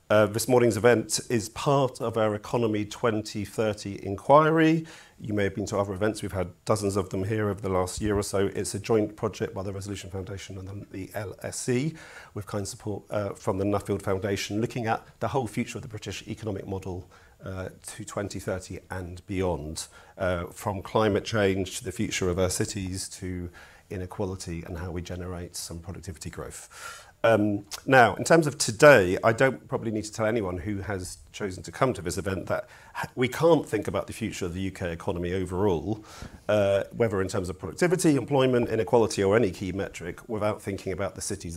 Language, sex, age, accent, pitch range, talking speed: English, male, 40-59, British, 95-110 Hz, 190 wpm